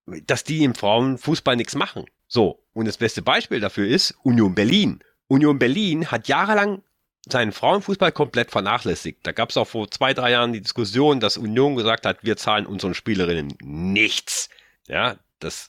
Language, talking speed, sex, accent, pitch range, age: German, 170 wpm, male, German, 100-135 Hz, 40-59